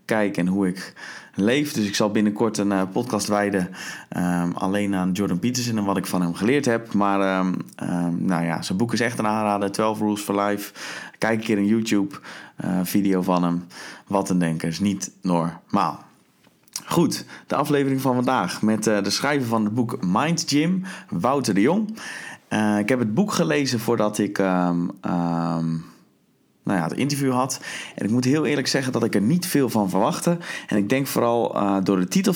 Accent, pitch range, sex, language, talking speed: Dutch, 95-130 Hz, male, Dutch, 200 wpm